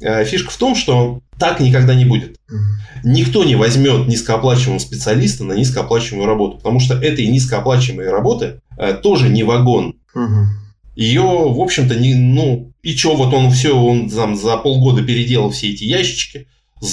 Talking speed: 150 wpm